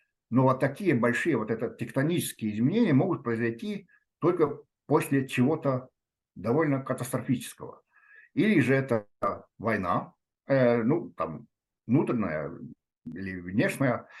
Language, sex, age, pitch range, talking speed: Russian, male, 60-79, 115-150 Hz, 95 wpm